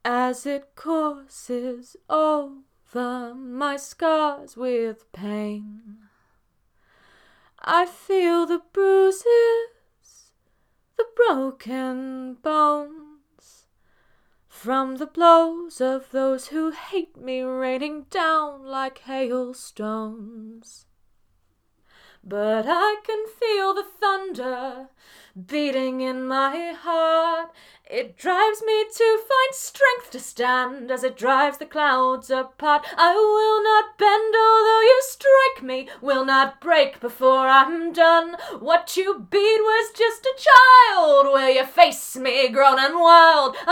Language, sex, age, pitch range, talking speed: English, female, 20-39, 260-385 Hz, 110 wpm